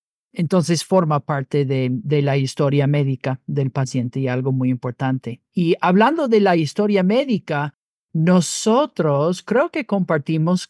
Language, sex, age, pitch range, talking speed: Spanish, male, 50-69, 150-180 Hz, 135 wpm